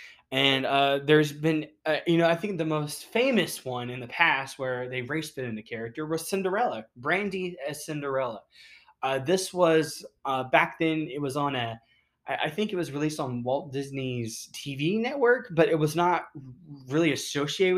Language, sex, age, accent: English, male, 20-39, American